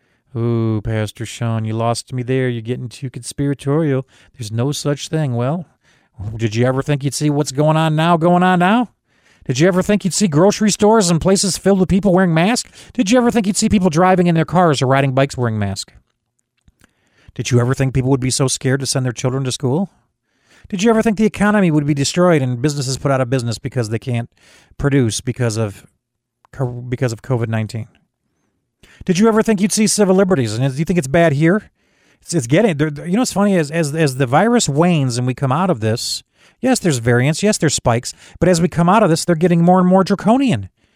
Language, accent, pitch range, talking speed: English, American, 125-180 Hz, 220 wpm